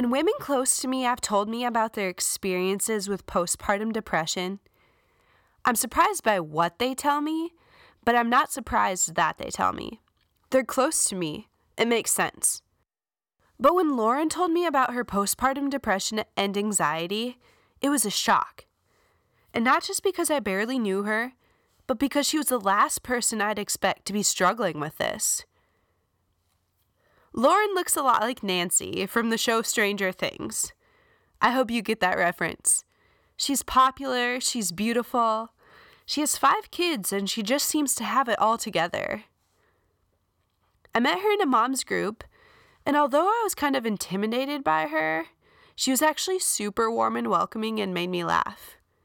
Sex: female